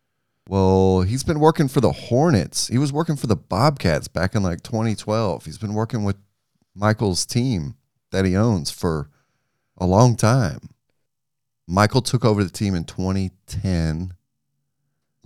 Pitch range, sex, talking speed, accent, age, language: 90-115 Hz, male, 145 wpm, American, 30-49, English